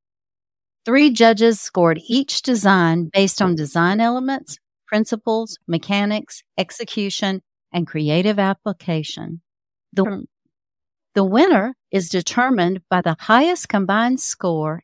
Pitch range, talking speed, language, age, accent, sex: 165-230 Hz, 100 wpm, English, 50-69, American, female